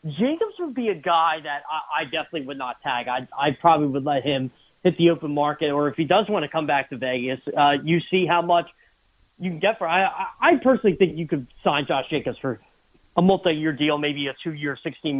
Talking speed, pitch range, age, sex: 230 wpm, 145-195 Hz, 30-49, male